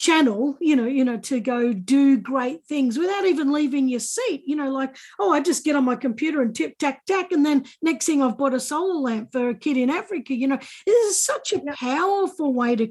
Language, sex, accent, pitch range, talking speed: English, female, Australian, 235-290 Hz, 240 wpm